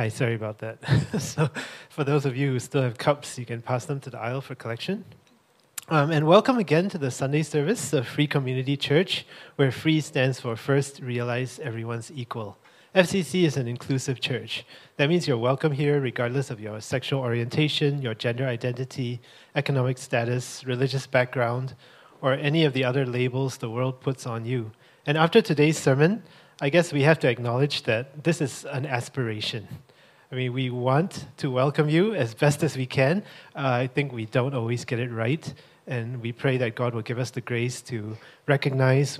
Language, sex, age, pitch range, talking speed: English, male, 30-49, 125-150 Hz, 190 wpm